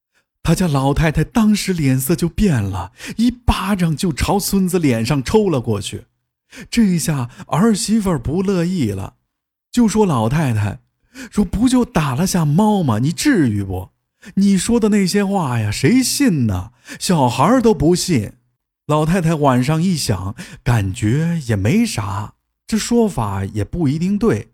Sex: male